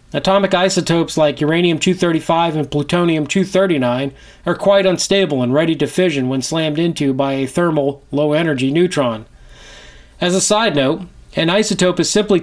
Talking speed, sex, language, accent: 140 wpm, male, English, American